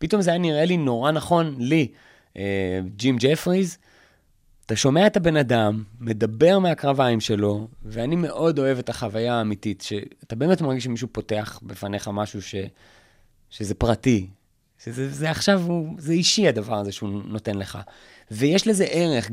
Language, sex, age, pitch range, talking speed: Hebrew, male, 30-49, 120-175 Hz, 150 wpm